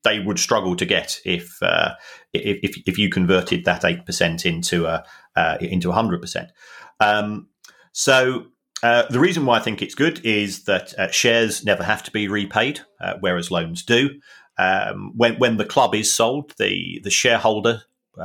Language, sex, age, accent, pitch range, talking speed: English, male, 40-59, British, 95-120 Hz, 180 wpm